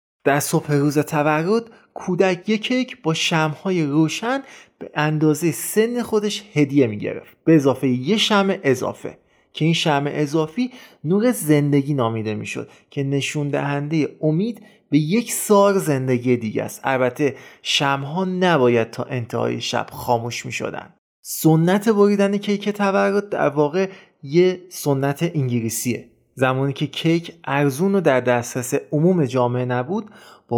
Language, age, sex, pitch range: Persian, 30-49, male, 140-195 Hz